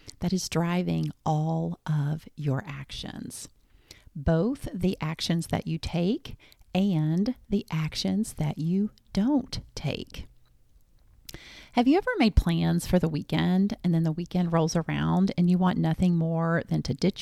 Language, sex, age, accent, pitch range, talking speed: English, female, 40-59, American, 160-215 Hz, 145 wpm